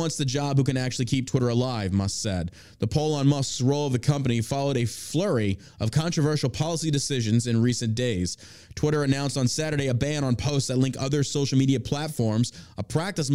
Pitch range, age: 115-145 Hz, 20-39